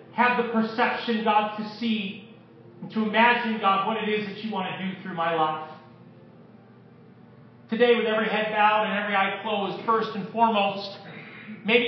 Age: 40-59